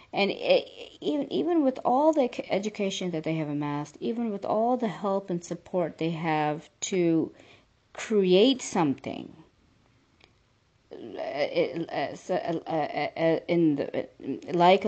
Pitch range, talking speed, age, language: 155-215 Hz, 95 wpm, 30-49, English